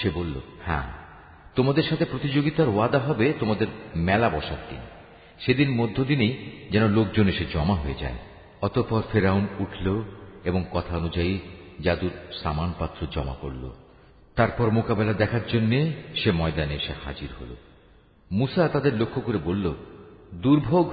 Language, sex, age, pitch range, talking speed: Bengali, male, 50-69, 85-125 Hz, 130 wpm